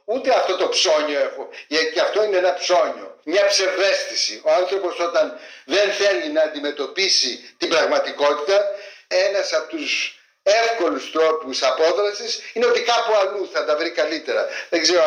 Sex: male